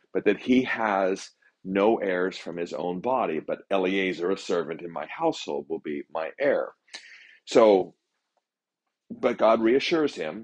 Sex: male